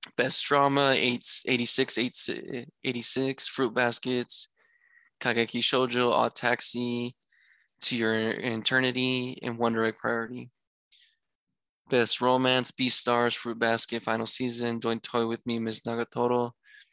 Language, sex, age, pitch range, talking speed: English, male, 20-39, 115-130 Hz, 115 wpm